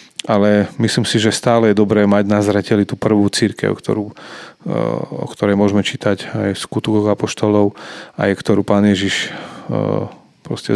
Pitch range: 100-115 Hz